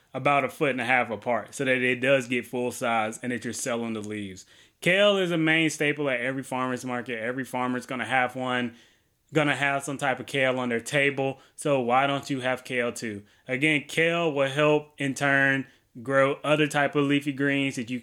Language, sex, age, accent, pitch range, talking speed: English, male, 20-39, American, 125-140 Hz, 220 wpm